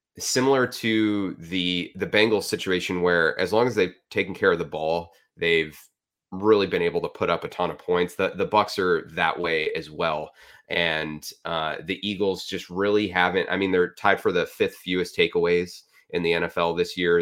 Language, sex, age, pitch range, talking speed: English, male, 30-49, 85-105 Hz, 200 wpm